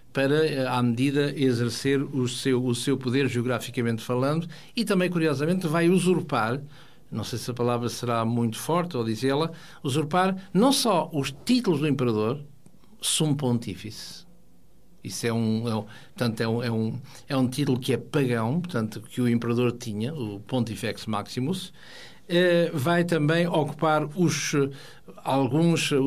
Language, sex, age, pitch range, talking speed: Portuguese, male, 60-79, 125-160 Hz, 145 wpm